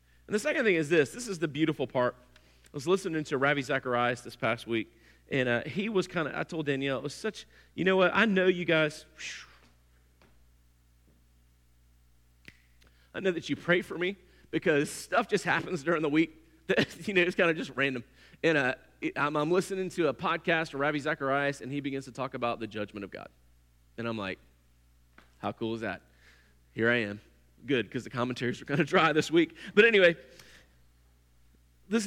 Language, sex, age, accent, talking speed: English, male, 30-49, American, 195 wpm